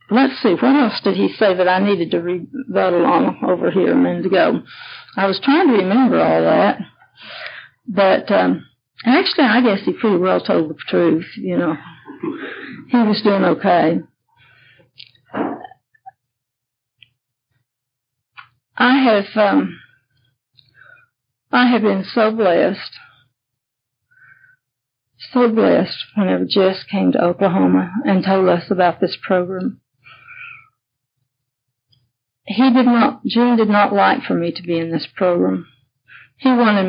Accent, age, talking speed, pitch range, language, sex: American, 60-79, 130 wpm, 165-235 Hz, English, female